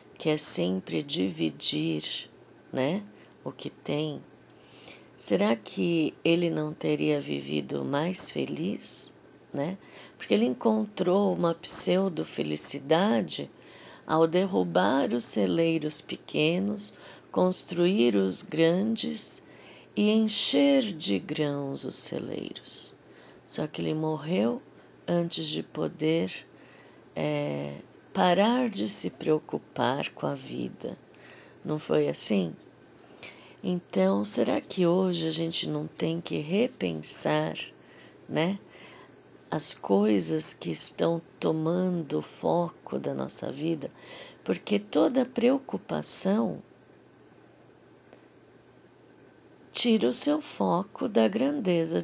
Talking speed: 95 wpm